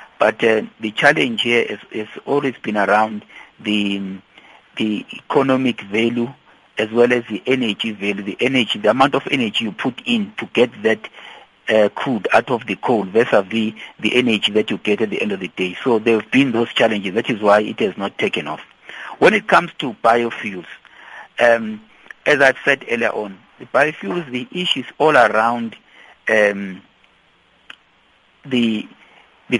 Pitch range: 105-125 Hz